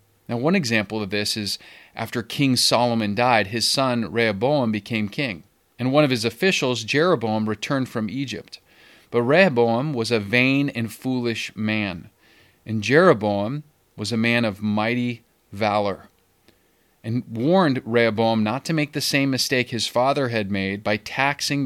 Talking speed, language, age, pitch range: 150 wpm, English, 30-49, 110-140 Hz